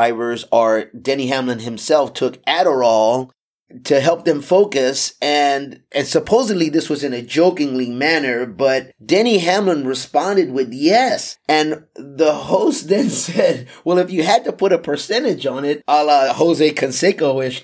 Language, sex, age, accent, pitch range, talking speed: English, male, 30-49, American, 120-155 Hz, 155 wpm